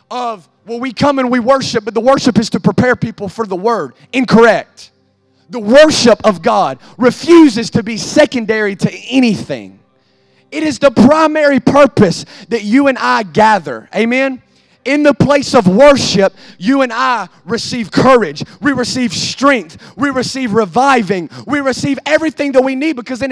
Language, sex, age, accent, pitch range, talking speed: English, male, 30-49, American, 185-260 Hz, 160 wpm